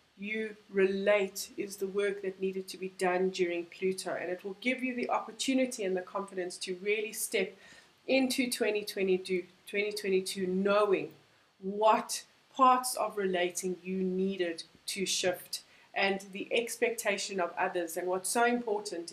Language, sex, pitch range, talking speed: English, female, 190-235 Hz, 145 wpm